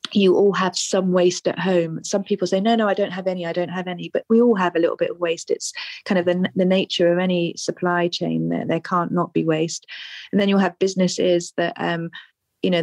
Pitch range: 175-190 Hz